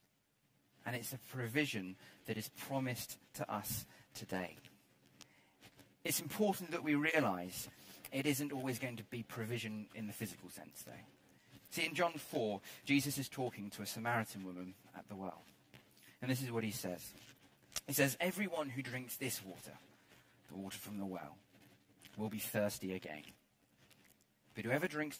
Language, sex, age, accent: English, male, 30-49, British